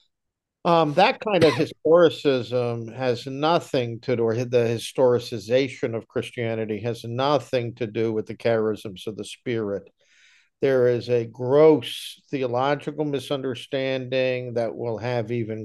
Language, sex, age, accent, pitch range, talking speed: English, male, 50-69, American, 120-145 Hz, 130 wpm